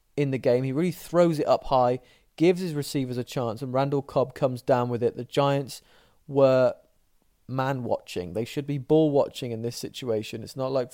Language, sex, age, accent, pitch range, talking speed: English, male, 20-39, British, 120-145 Hz, 205 wpm